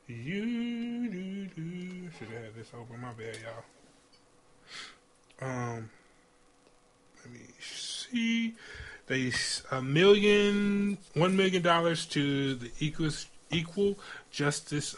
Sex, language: male, English